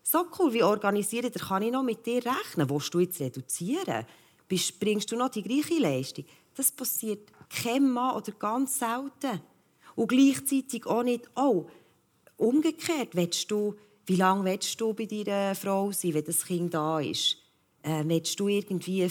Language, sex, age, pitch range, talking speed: German, female, 40-59, 185-235 Hz, 160 wpm